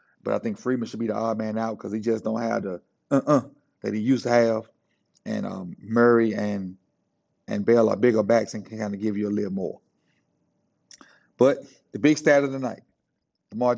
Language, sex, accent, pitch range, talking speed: English, male, American, 115-135 Hz, 210 wpm